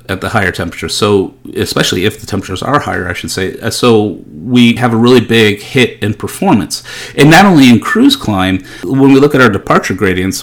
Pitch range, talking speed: 95-115 Hz, 205 wpm